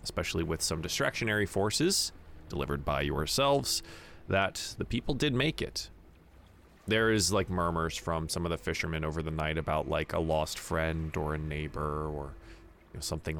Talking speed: 170 wpm